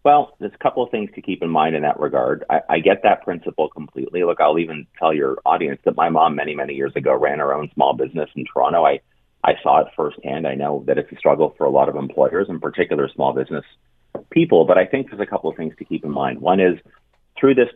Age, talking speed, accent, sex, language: 30-49, 255 wpm, American, male, English